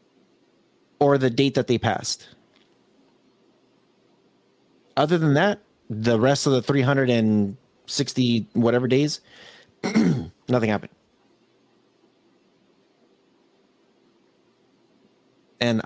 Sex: male